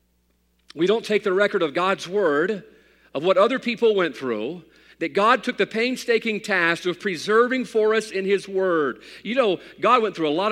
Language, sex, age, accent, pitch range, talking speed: English, male, 50-69, American, 155-215 Hz, 195 wpm